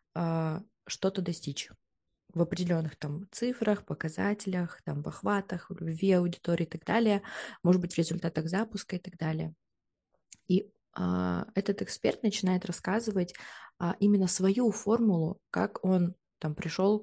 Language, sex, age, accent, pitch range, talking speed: Russian, female, 20-39, native, 170-195 Hz, 130 wpm